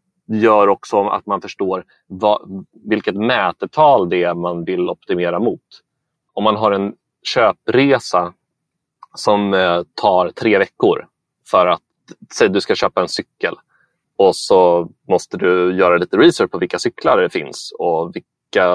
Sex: male